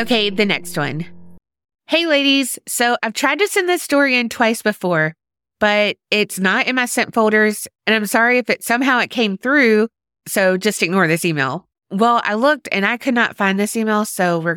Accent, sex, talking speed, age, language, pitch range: American, female, 200 wpm, 30-49, English, 180-245 Hz